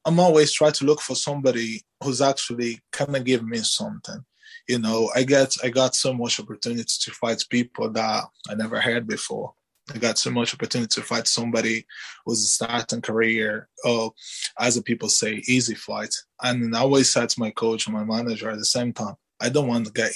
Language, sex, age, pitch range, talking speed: English, male, 20-39, 115-130 Hz, 200 wpm